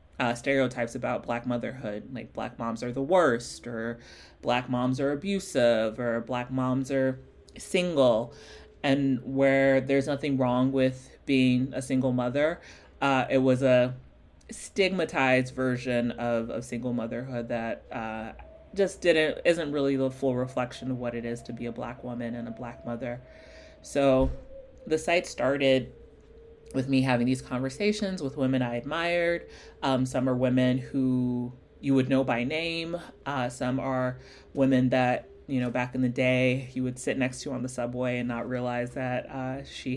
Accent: American